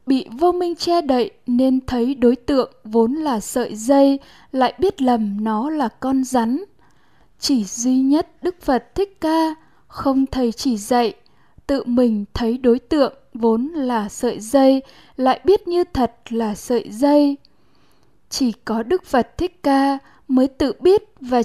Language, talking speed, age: Vietnamese, 160 wpm, 10-29